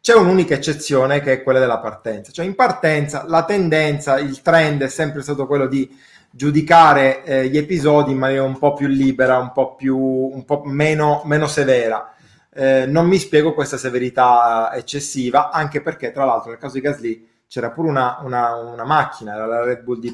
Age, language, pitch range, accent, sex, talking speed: 20-39, Italian, 130-155 Hz, native, male, 180 wpm